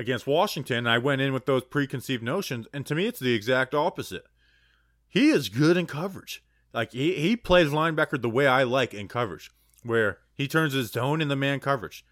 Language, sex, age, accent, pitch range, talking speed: English, male, 20-39, American, 115-145 Hz, 205 wpm